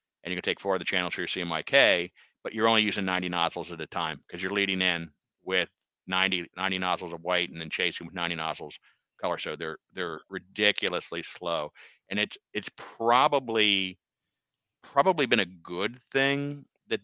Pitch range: 90-110 Hz